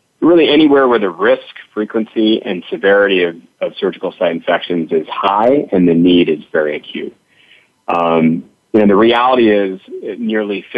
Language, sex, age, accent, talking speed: English, male, 40-59, American, 150 wpm